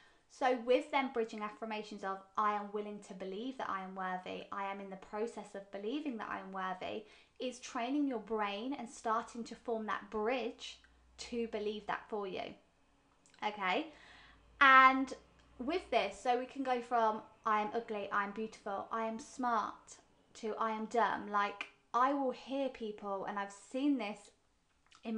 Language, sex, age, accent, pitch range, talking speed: English, female, 20-39, British, 210-255 Hz, 170 wpm